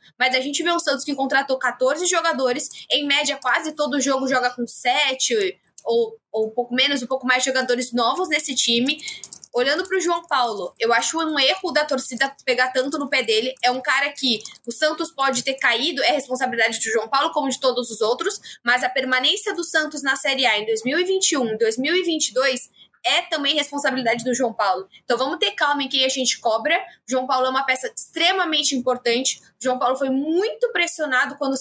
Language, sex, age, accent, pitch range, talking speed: Portuguese, female, 20-39, Brazilian, 255-310 Hz, 200 wpm